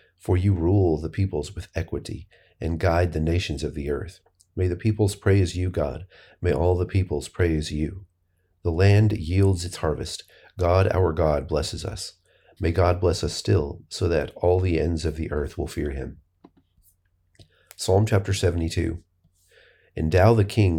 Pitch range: 80-95 Hz